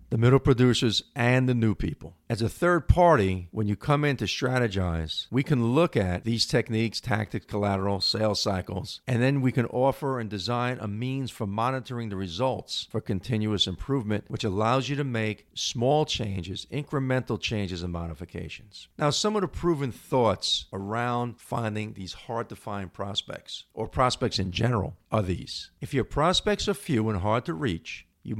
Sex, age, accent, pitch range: male, 50-69, American, 100-135 Hz